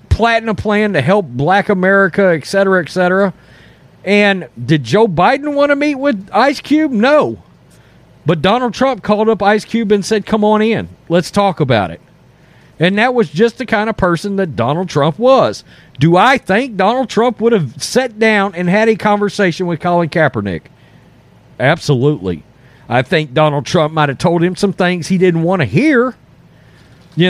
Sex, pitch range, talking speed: male, 160-220 Hz, 180 wpm